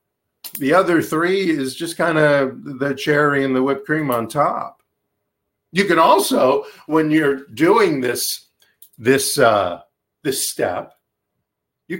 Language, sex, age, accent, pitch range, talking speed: English, male, 50-69, American, 120-195 Hz, 135 wpm